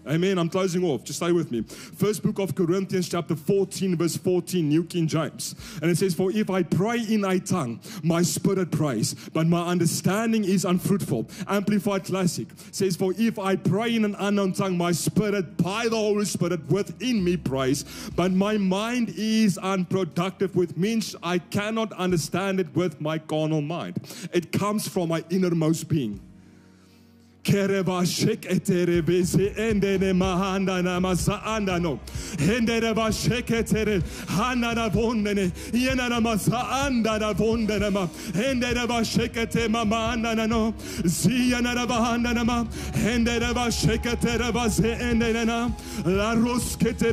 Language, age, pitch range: English, 30-49, 175-225 Hz